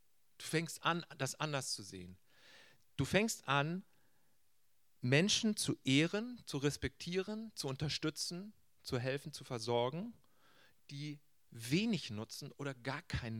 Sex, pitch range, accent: male, 120-170 Hz, German